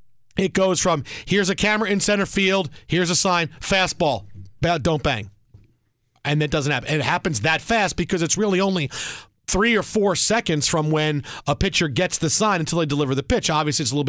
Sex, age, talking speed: male, 40-59, 205 wpm